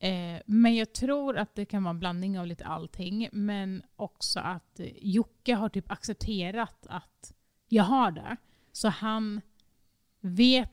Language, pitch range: Swedish, 180-220 Hz